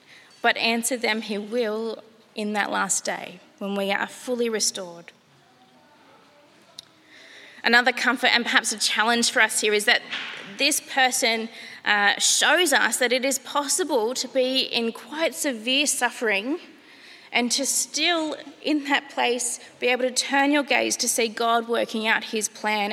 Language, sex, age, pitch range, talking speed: English, female, 20-39, 215-260 Hz, 155 wpm